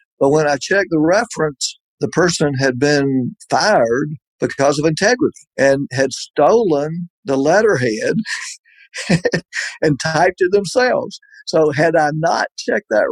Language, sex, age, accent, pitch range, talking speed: English, male, 50-69, American, 130-160 Hz, 135 wpm